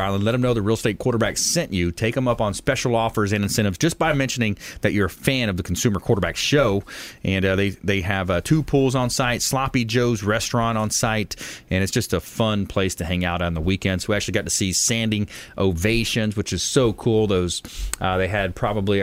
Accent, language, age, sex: American, English, 30-49, male